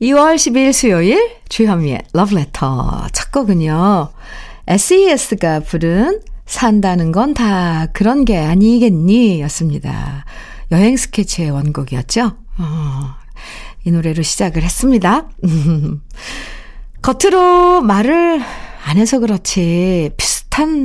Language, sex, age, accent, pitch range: Korean, female, 50-69, native, 170-250 Hz